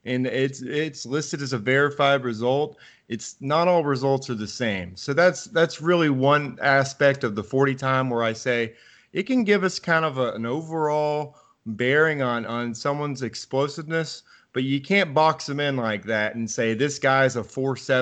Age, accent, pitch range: 30-49, American, 120-150 Hz